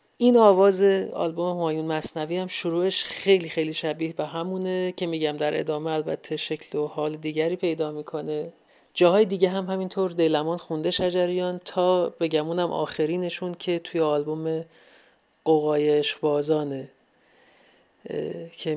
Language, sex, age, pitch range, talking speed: Persian, male, 30-49, 155-175 Hz, 130 wpm